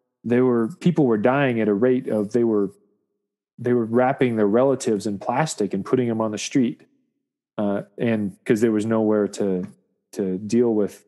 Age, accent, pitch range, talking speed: 30-49, American, 110-130 Hz, 185 wpm